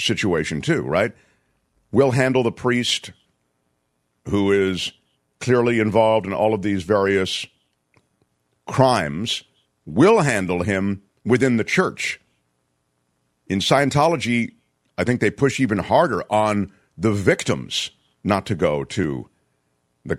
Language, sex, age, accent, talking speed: English, male, 50-69, American, 115 wpm